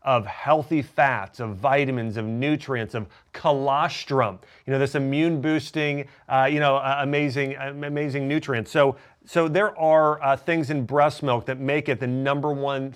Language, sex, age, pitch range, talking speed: English, male, 40-59, 130-150 Hz, 165 wpm